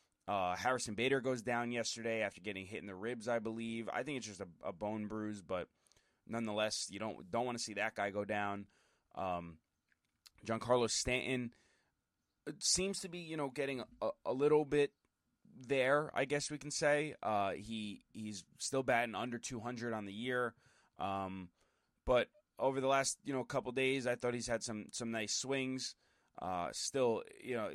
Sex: male